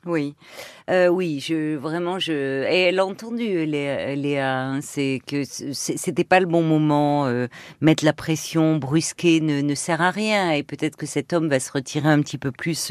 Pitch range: 150-200 Hz